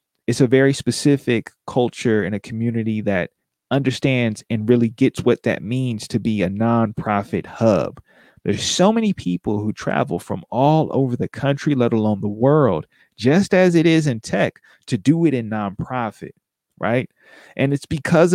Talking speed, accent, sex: 165 wpm, American, male